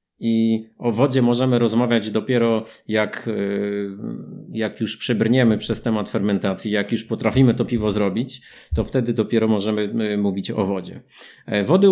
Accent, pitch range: native, 100-135 Hz